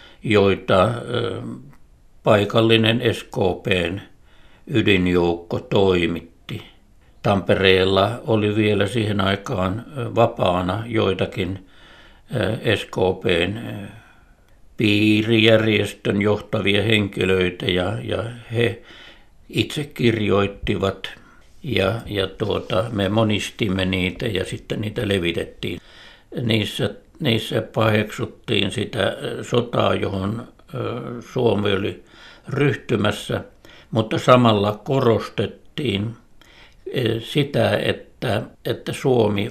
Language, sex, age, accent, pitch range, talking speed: Finnish, male, 60-79, native, 95-115 Hz, 70 wpm